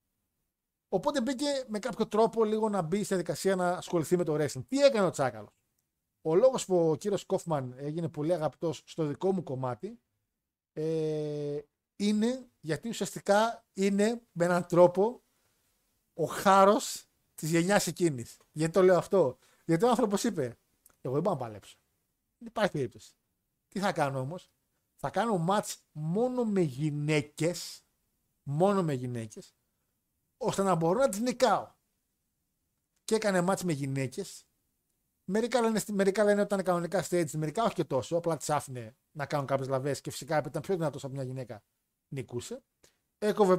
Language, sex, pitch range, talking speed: Greek, male, 145-205 Hz, 155 wpm